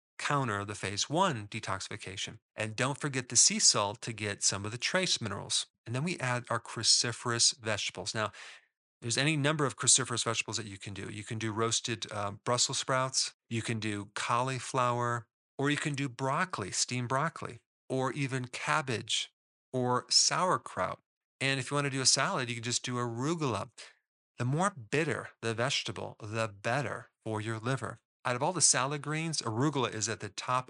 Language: English